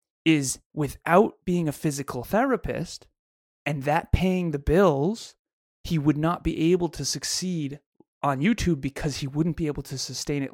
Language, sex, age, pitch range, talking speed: English, male, 30-49, 130-160 Hz, 160 wpm